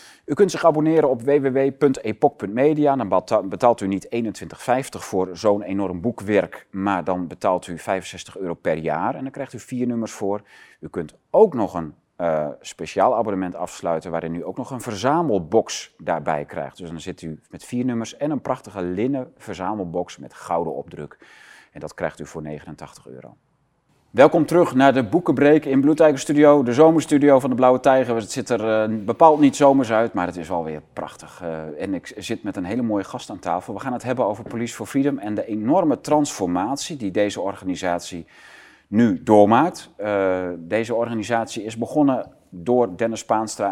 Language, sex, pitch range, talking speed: Dutch, male, 90-130 Hz, 185 wpm